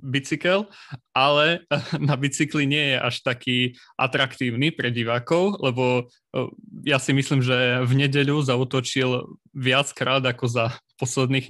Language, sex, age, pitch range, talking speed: Slovak, male, 20-39, 125-145 Hz, 120 wpm